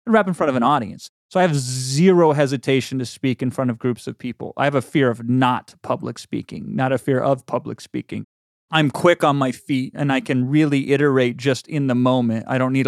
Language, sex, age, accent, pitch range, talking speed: English, male, 30-49, American, 125-150 Hz, 235 wpm